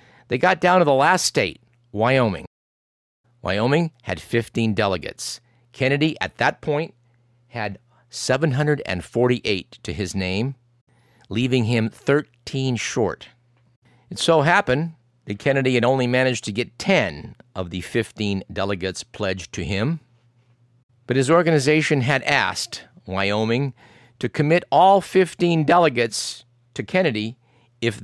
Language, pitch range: English, 110-135 Hz